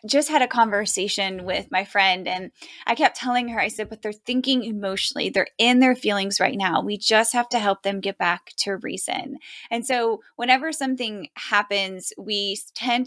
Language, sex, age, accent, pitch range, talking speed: English, female, 10-29, American, 195-245 Hz, 190 wpm